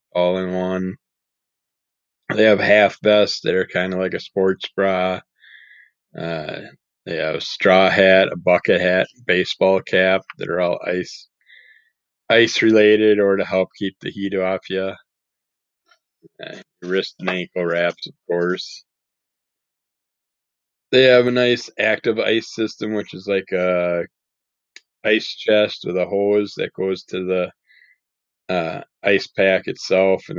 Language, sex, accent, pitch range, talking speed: English, male, American, 90-105 Hz, 140 wpm